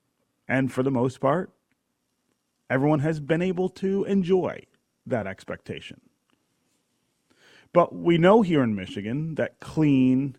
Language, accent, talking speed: English, American, 120 wpm